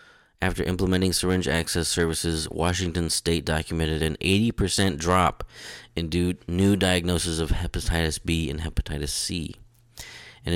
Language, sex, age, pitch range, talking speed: English, male, 30-49, 80-105 Hz, 120 wpm